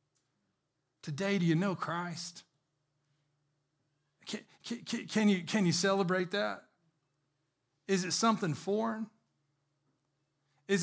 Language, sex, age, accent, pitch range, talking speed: English, male, 40-59, American, 150-190 Hz, 85 wpm